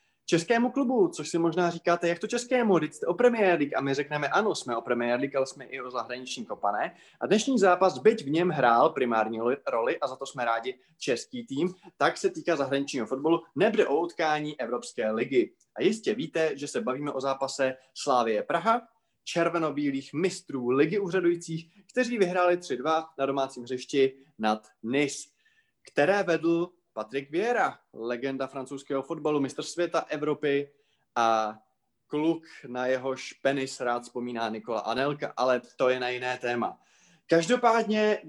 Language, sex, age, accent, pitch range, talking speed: Czech, male, 20-39, native, 130-180 Hz, 160 wpm